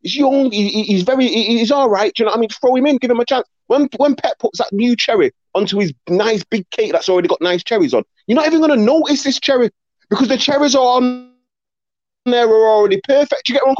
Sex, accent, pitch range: male, British, 195-270 Hz